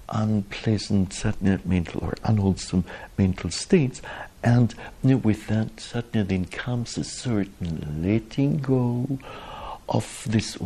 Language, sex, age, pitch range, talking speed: English, male, 60-79, 90-120 Hz, 125 wpm